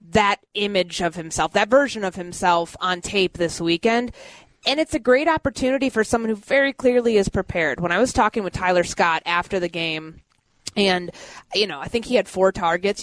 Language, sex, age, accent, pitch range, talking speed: English, female, 20-39, American, 175-230 Hz, 200 wpm